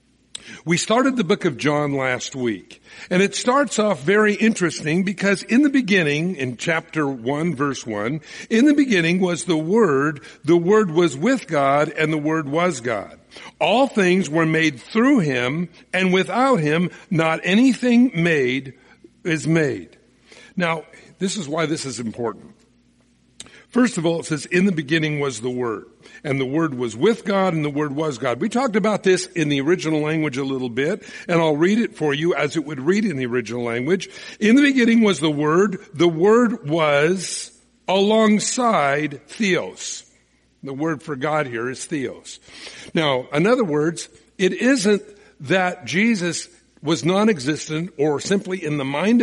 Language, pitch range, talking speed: English, 150-205 Hz, 170 wpm